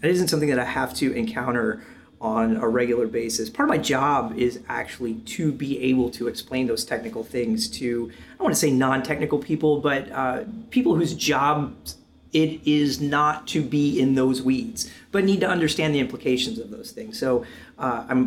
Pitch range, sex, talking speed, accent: 125-185 Hz, male, 195 wpm, American